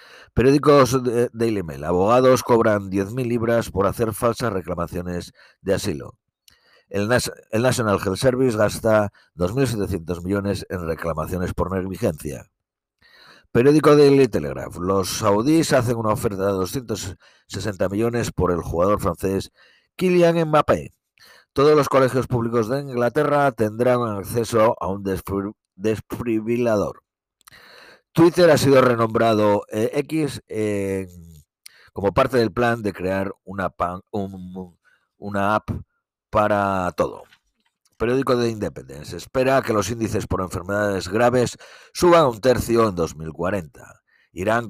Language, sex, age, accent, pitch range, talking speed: Spanish, male, 50-69, Spanish, 95-120 Hz, 120 wpm